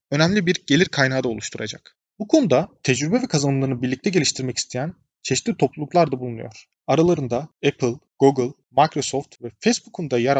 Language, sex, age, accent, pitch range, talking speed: Turkish, male, 30-49, native, 130-175 Hz, 150 wpm